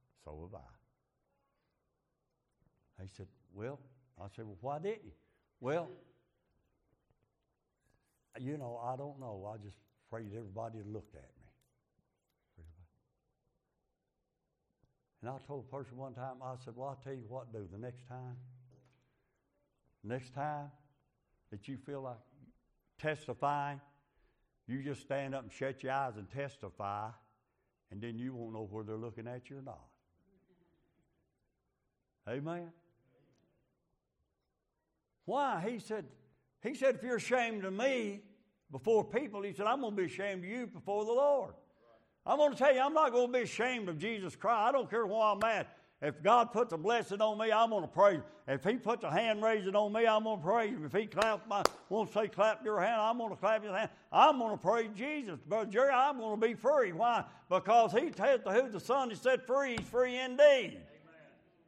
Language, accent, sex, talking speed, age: English, American, male, 175 wpm, 60-79